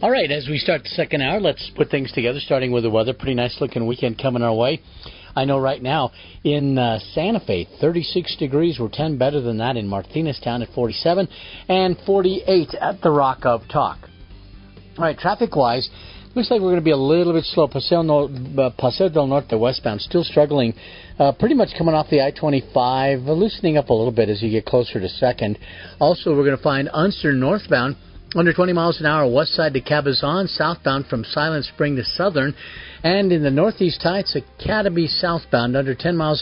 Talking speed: 195 wpm